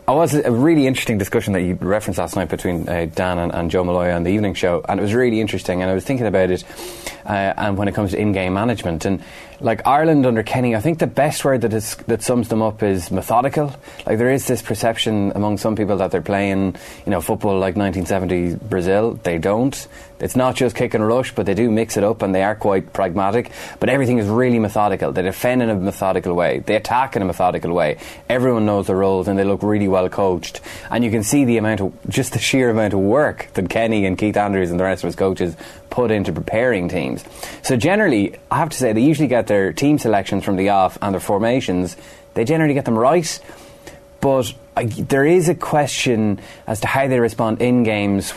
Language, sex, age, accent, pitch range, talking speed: English, male, 20-39, Irish, 95-120 Hz, 230 wpm